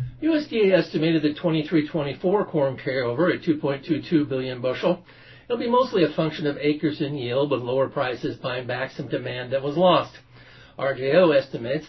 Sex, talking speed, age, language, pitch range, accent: male, 155 wpm, 50-69, English, 135-170 Hz, American